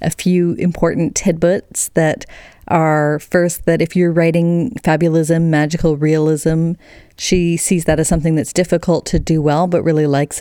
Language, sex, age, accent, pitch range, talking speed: English, female, 30-49, American, 145-170 Hz, 155 wpm